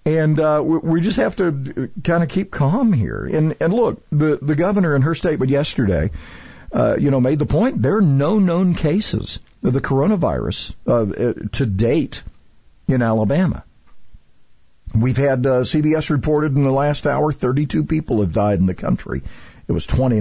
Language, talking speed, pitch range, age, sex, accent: English, 180 wpm, 115-155 Hz, 50-69, male, American